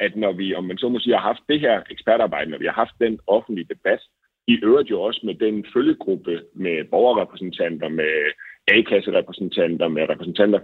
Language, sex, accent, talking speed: Danish, male, native, 185 wpm